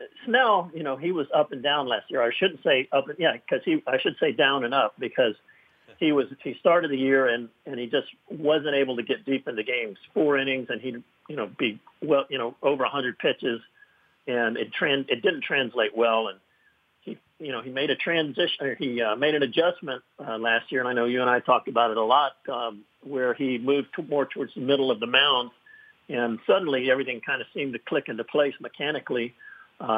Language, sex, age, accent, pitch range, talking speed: English, male, 50-69, American, 125-160 Hz, 230 wpm